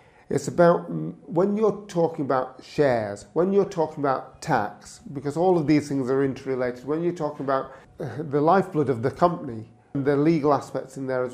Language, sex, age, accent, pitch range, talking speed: English, male, 40-59, British, 125-150 Hz, 180 wpm